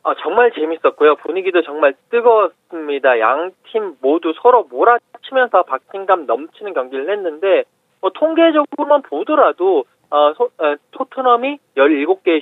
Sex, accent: male, native